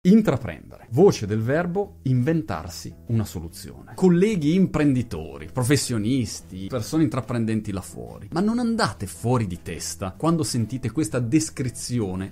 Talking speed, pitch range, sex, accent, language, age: 115 wpm, 105-165 Hz, male, native, Italian, 30-49